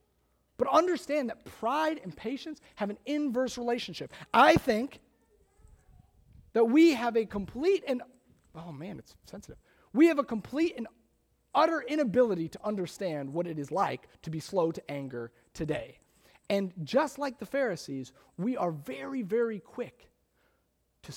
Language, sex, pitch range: English, male, 135-230 Hz